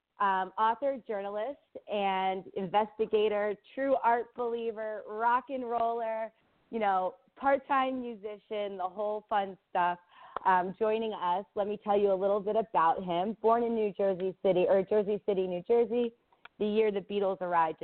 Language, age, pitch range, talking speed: English, 30-49, 165-205 Hz, 155 wpm